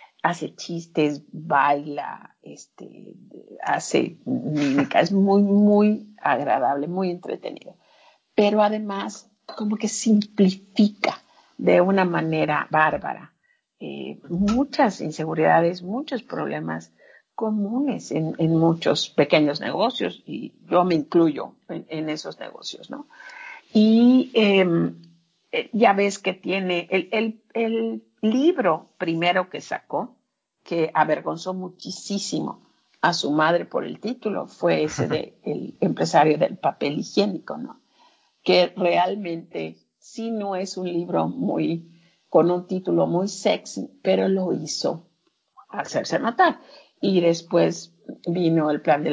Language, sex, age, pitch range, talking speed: Spanish, female, 50-69, 165-220 Hz, 115 wpm